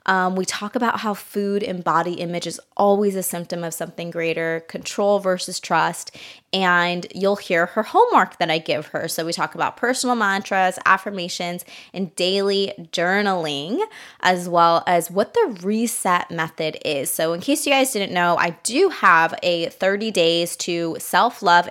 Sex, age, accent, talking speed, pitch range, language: female, 20-39, American, 170 wpm, 170-210 Hz, English